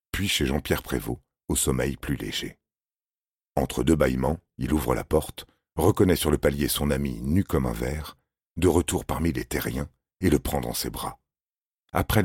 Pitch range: 70-85 Hz